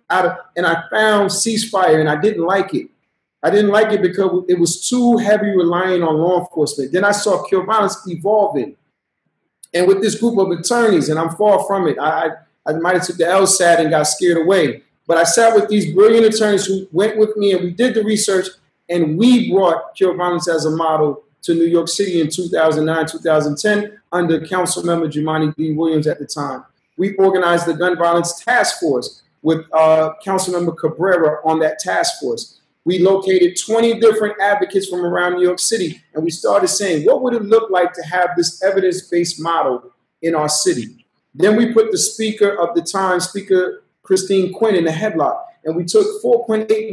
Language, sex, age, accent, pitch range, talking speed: English, male, 30-49, American, 165-205 Hz, 195 wpm